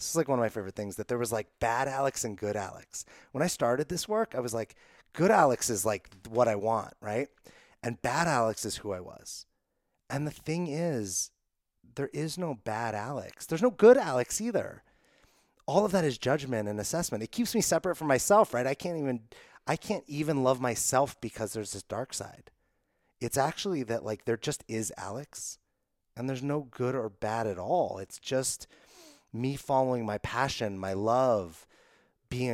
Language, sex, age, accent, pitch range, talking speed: English, male, 30-49, American, 110-140 Hz, 195 wpm